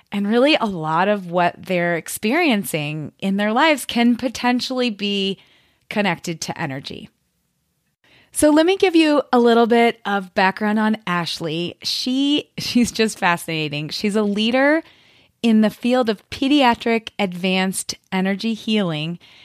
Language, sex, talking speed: English, female, 135 wpm